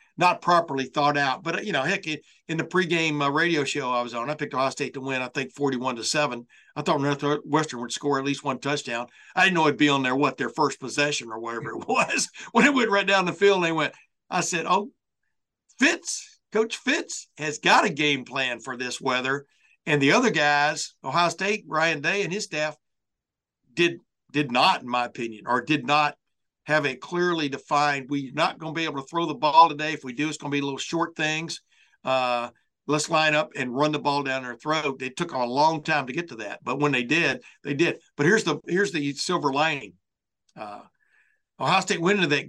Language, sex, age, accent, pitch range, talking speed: English, male, 60-79, American, 130-160 Hz, 230 wpm